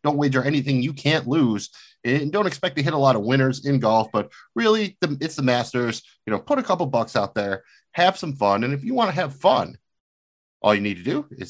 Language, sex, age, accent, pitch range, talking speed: English, male, 30-49, American, 100-145 Hz, 245 wpm